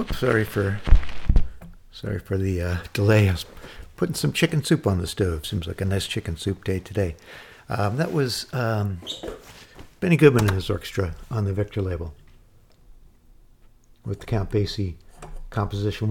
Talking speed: 160 wpm